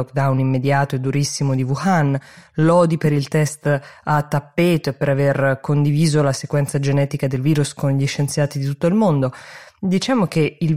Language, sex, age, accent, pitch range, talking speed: Italian, female, 20-39, native, 140-165 Hz, 175 wpm